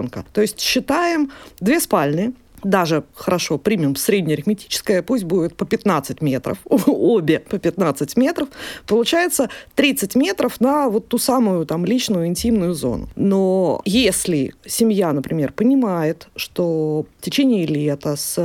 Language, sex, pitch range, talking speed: Russian, female, 160-230 Hz, 125 wpm